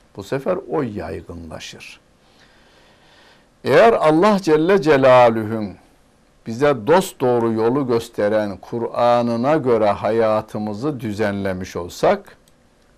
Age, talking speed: 60-79, 85 wpm